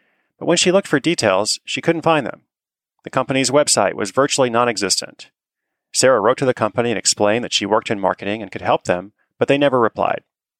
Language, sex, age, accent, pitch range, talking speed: English, male, 30-49, American, 105-140 Hz, 205 wpm